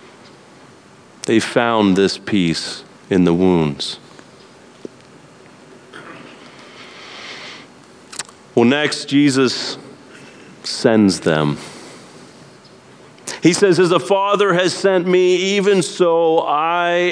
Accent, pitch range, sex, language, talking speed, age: American, 125-165 Hz, male, English, 80 wpm, 40-59